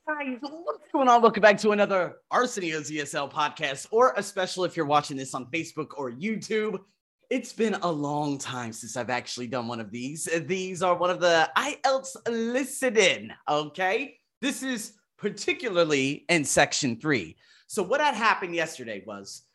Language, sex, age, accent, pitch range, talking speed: English, male, 30-49, American, 150-225 Hz, 165 wpm